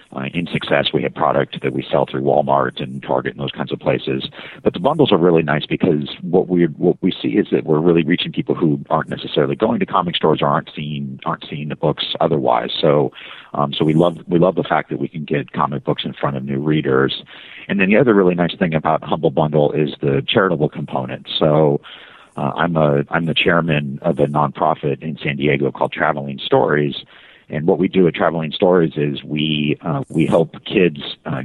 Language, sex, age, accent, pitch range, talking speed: English, male, 50-69, American, 70-75 Hz, 220 wpm